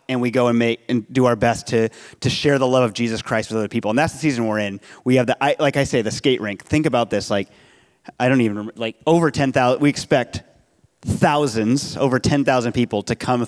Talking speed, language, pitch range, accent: 245 wpm, English, 120-155 Hz, American